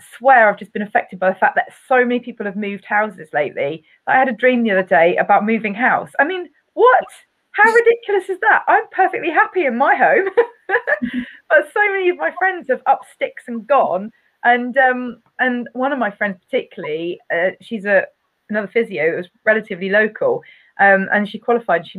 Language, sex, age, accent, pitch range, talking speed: English, female, 30-49, British, 190-280 Hz, 195 wpm